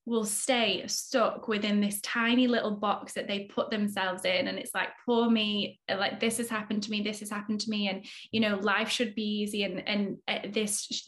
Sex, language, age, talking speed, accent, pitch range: female, English, 10-29, 220 wpm, British, 210-250 Hz